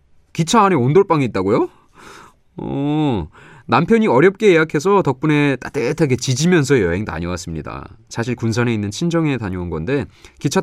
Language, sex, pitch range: Korean, male, 100-155 Hz